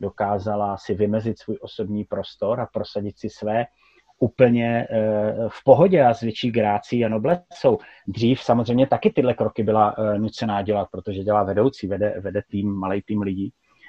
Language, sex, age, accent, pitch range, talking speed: Czech, male, 30-49, native, 105-135 Hz, 160 wpm